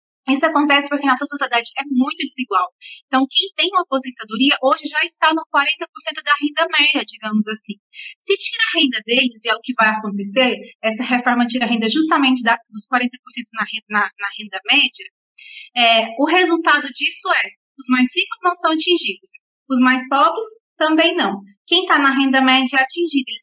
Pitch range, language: 245-315 Hz, Portuguese